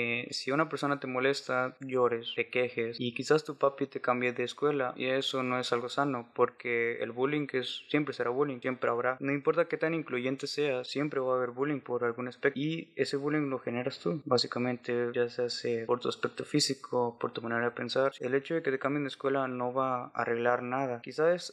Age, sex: 20-39, male